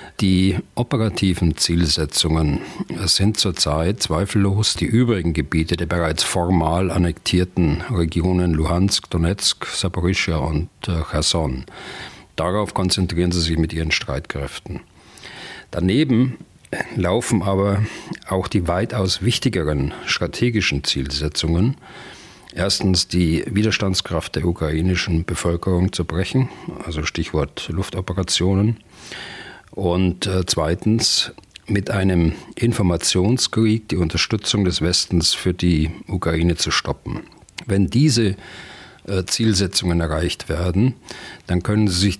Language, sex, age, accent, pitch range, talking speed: German, male, 40-59, German, 85-100 Hz, 100 wpm